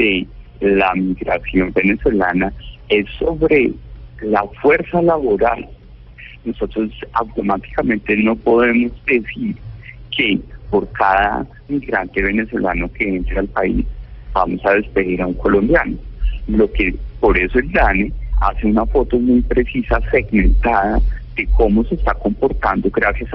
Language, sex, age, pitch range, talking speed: Spanish, male, 50-69, 90-120 Hz, 120 wpm